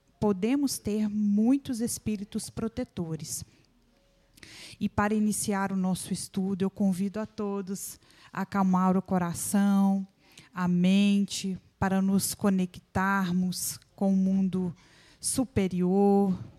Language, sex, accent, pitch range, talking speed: Portuguese, female, Brazilian, 185-205 Hz, 100 wpm